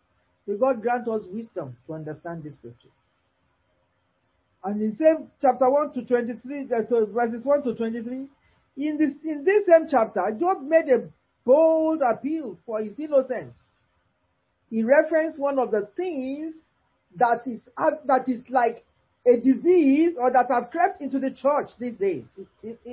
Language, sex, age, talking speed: English, male, 40-59, 145 wpm